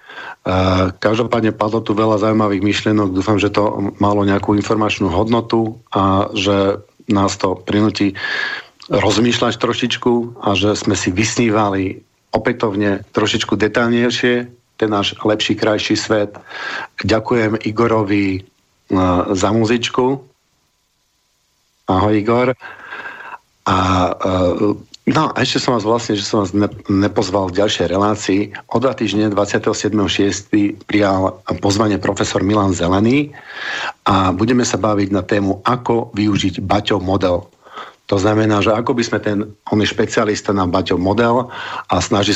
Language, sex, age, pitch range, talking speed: Slovak, male, 50-69, 100-110 Hz, 125 wpm